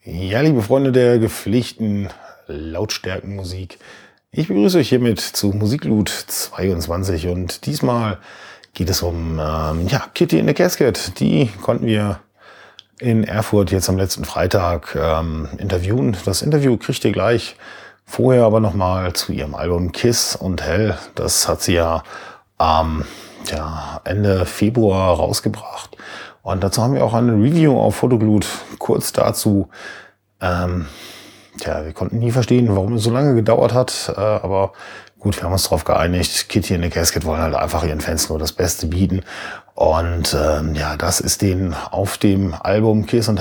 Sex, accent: male, German